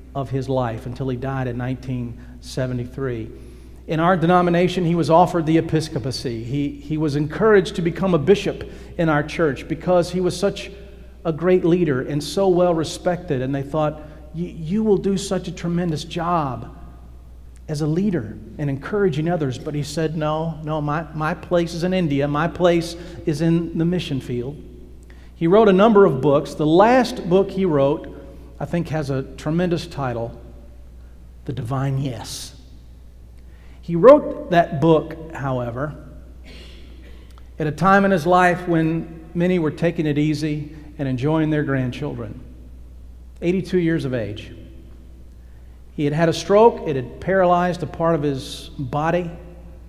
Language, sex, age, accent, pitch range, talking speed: English, male, 50-69, American, 125-170 Hz, 160 wpm